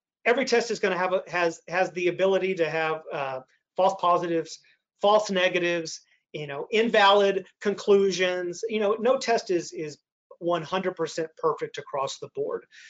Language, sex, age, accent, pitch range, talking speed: English, male, 40-59, American, 175-240 Hz, 155 wpm